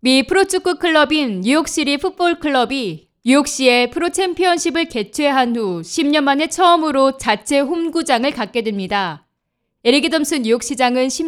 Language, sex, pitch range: Korean, female, 225-305 Hz